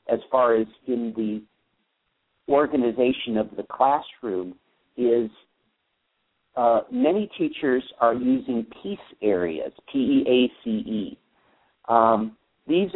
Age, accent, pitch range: 50-69, American, 115-150 Hz